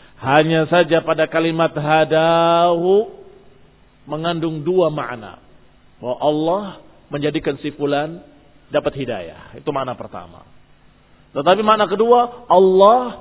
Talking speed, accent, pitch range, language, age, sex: 95 wpm, native, 145-180 Hz, Indonesian, 40-59, male